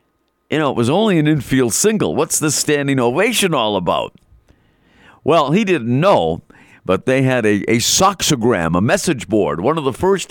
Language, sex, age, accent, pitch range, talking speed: English, male, 50-69, American, 105-140 Hz, 180 wpm